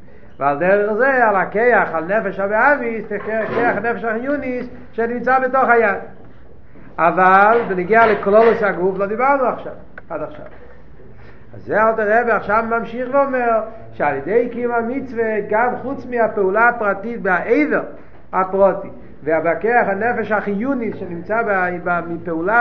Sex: male